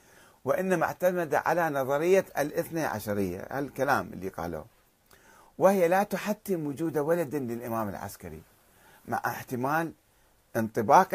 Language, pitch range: Arabic, 105-150 Hz